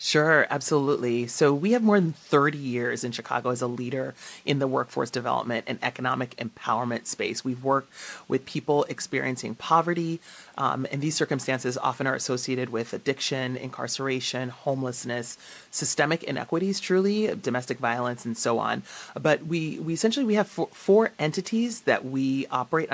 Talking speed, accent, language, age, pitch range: 155 wpm, American, English, 30-49, 130-165 Hz